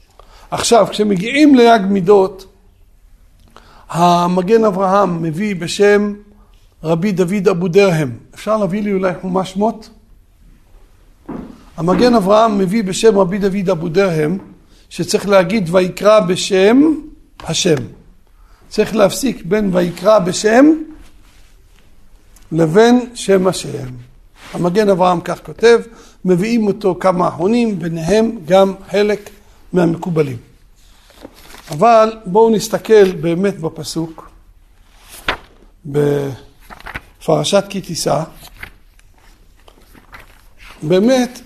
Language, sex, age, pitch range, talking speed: Hebrew, male, 60-79, 160-215 Hz, 85 wpm